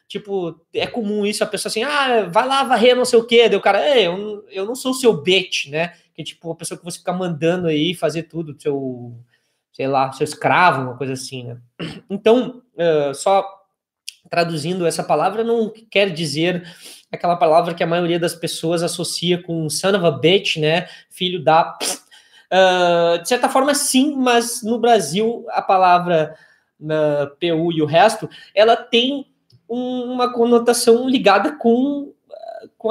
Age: 20-39